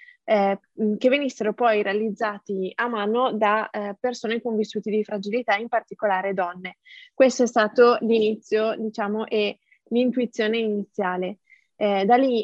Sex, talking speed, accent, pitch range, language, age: female, 135 wpm, native, 210-245 Hz, Italian, 20-39